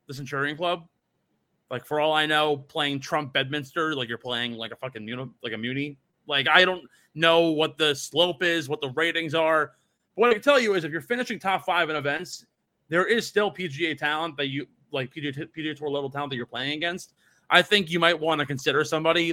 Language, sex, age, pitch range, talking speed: English, male, 30-49, 130-165 Hz, 225 wpm